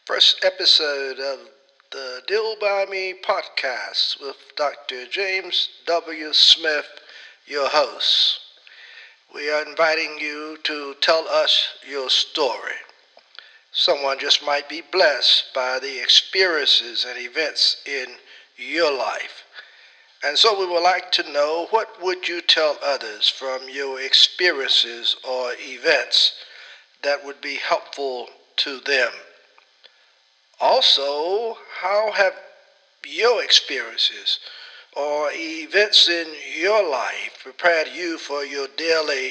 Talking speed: 115 wpm